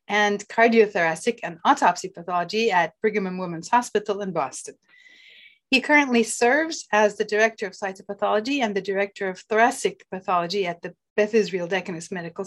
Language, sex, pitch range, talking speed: English, female, 185-235 Hz, 155 wpm